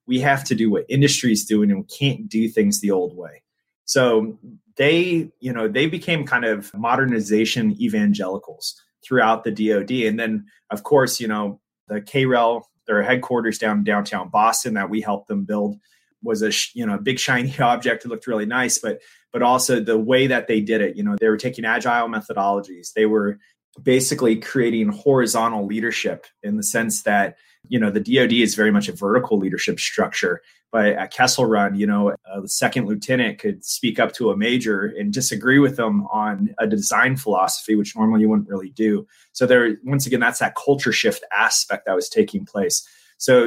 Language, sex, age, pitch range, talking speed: English, male, 20-39, 110-150 Hz, 190 wpm